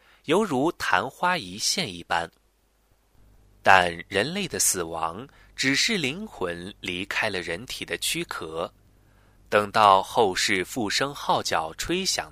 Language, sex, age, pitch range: Chinese, male, 20-39, 90-115 Hz